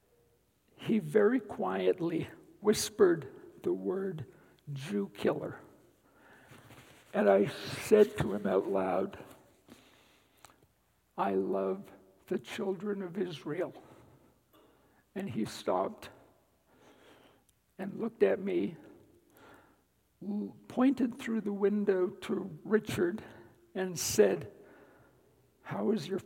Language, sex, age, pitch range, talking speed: English, male, 60-79, 170-220 Hz, 90 wpm